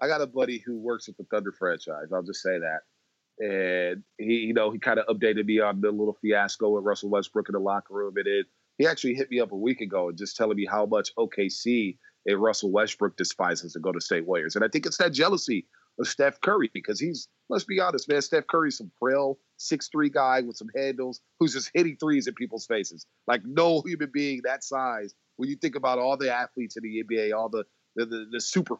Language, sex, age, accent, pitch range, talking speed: English, male, 30-49, American, 115-170 Hz, 240 wpm